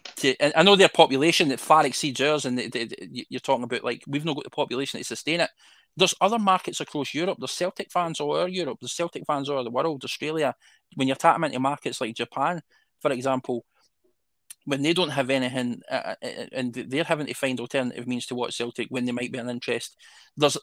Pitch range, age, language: 125-150 Hz, 20-39, English